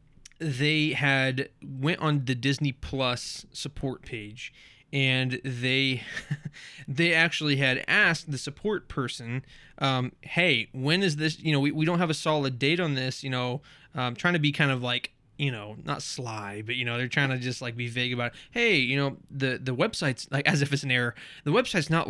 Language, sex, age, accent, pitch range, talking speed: English, male, 20-39, American, 130-160 Hz, 205 wpm